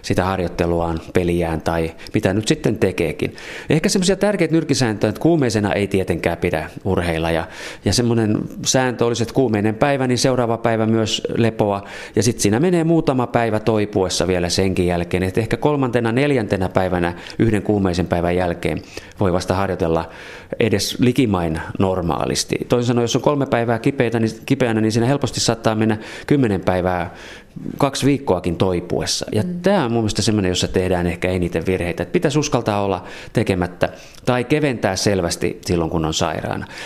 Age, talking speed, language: 30-49, 155 wpm, Finnish